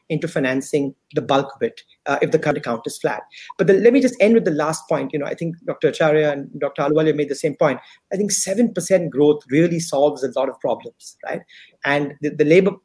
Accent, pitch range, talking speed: Indian, 150-205 Hz, 240 wpm